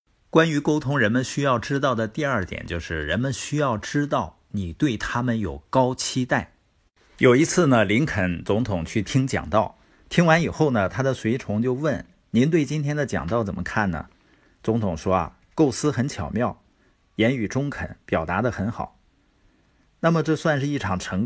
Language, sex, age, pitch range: Chinese, male, 50-69, 95-145 Hz